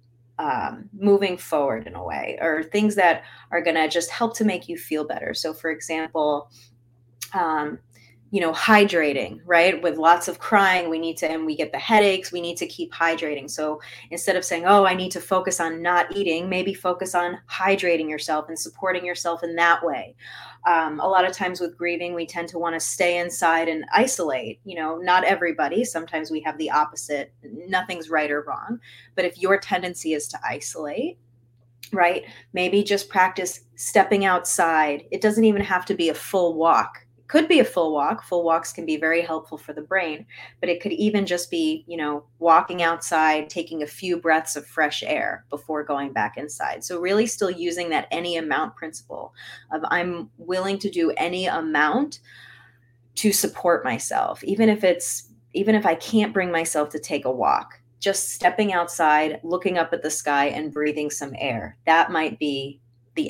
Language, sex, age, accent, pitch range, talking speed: English, female, 30-49, American, 150-185 Hz, 190 wpm